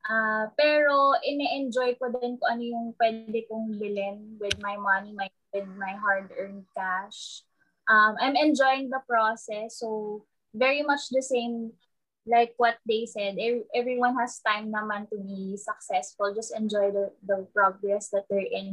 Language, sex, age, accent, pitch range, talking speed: English, female, 20-39, Filipino, 205-255 Hz, 155 wpm